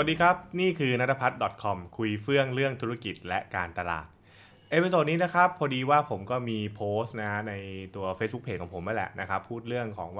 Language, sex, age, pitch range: Thai, male, 20-39, 105-140 Hz